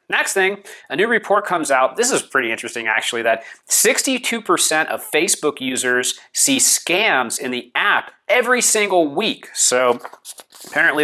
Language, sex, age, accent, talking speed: English, male, 30-49, American, 145 wpm